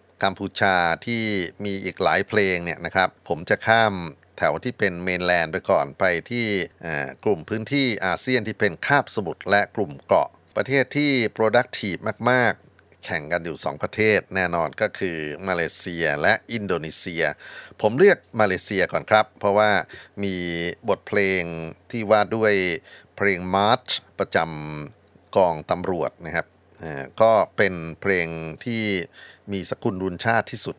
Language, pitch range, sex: Thai, 90-110 Hz, male